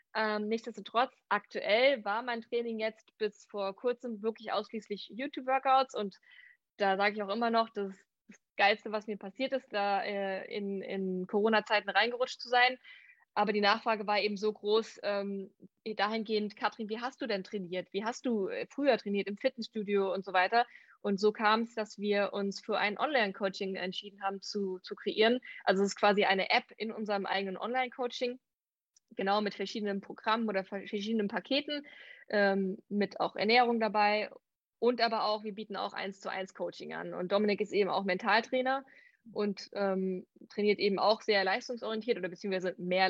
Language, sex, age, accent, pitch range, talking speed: German, female, 20-39, German, 195-230 Hz, 175 wpm